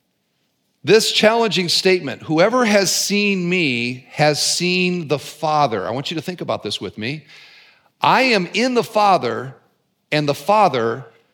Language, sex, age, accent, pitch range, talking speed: English, male, 50-69, American, 160-230 Hz, 150 wpm